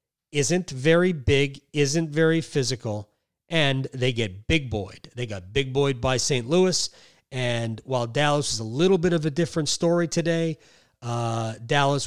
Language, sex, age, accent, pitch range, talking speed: English, male, 40-59, American, 115-160 Hz, 150 wpm